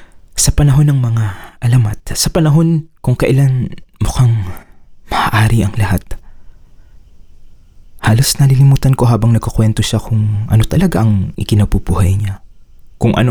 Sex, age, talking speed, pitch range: male, 20-39, 120 wpm, 95-125 Hz